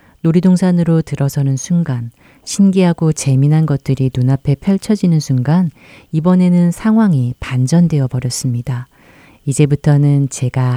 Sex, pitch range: female, 125-150 Hz